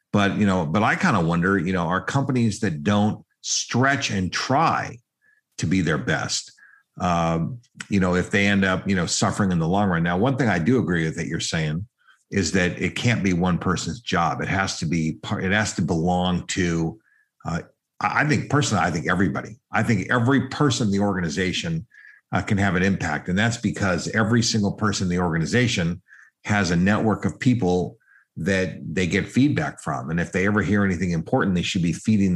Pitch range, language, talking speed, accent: 95-115 Hz, English, 210 wpm, American